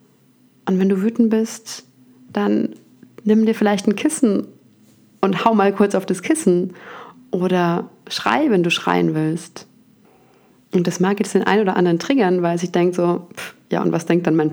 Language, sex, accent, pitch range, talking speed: German, female, German, 170-200 Hz, 185 wpm